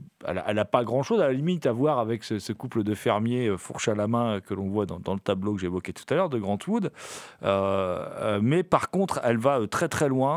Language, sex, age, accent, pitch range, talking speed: French, male, 40-59, French, 115-160 Hz, 245 wpm